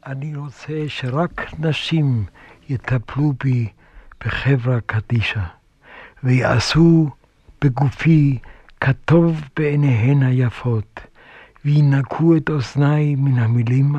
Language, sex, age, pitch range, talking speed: Hebrew, male, 60-79, 130-155 Hz, 75 wpm